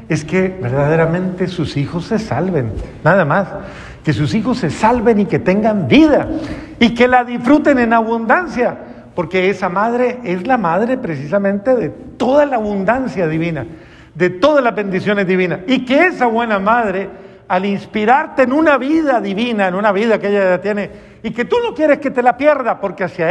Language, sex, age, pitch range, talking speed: Spanish, male, 50-69, 165-235 Hz, 180 wpm